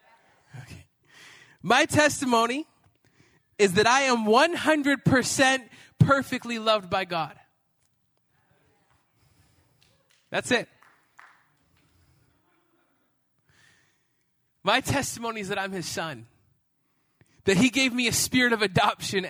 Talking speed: 85 wpm